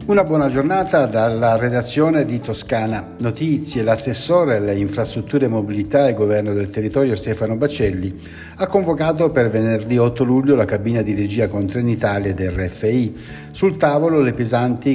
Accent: native